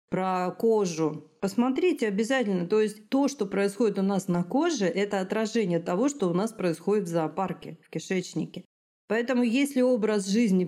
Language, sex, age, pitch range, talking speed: Russian, female, 40-59, 170-225 Hz, 155 wpm